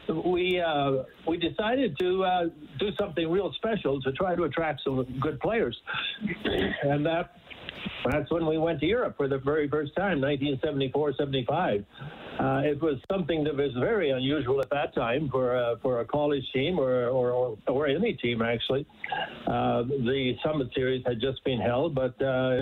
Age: 60-79